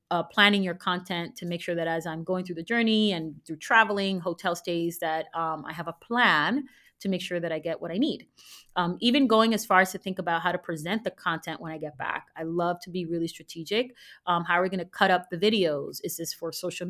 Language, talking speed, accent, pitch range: English, 255 wpm, American, 165-195 Hz